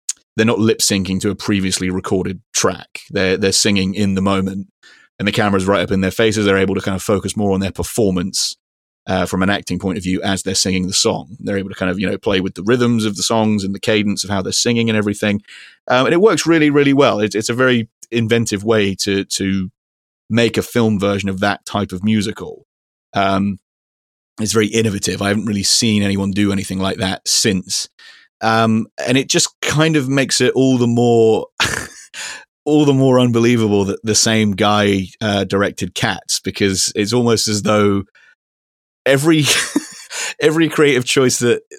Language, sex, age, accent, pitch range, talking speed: English, male, 30-49, British, 95-115 Hz, 195 wpm